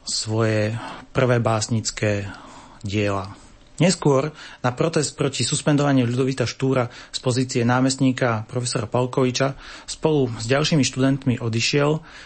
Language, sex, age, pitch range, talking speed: Slovak, male, 30-49, 120-140 Hz, 105 wpm